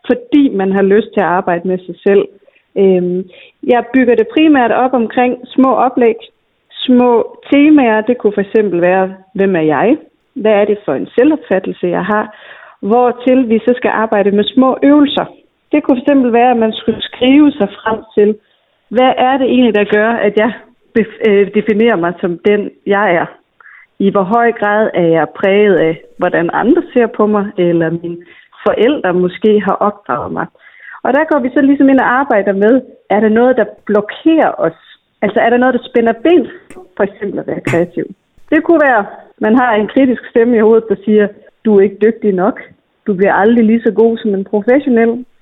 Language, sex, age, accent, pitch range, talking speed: Danish, female, 40-59, native, 200-255 Hz, 190 wpm